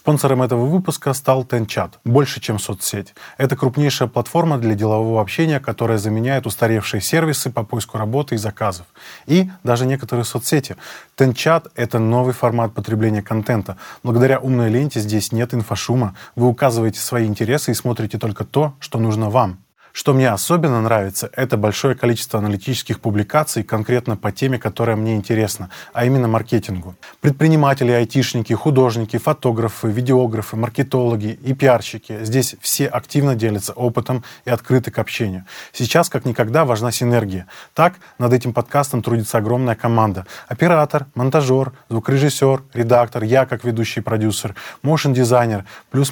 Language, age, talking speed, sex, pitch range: Russian, 20-39, 140 wpm, male, 110-135 Hz